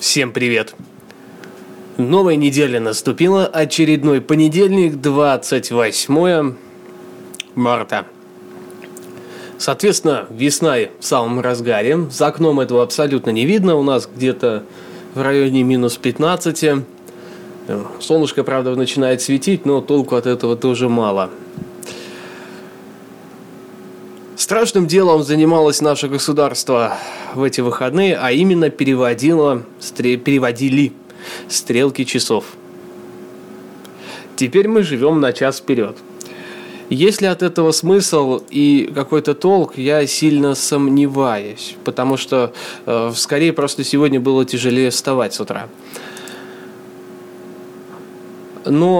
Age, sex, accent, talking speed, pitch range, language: 20-39, male, native, 95 wpm, 120-155 Hz, Russian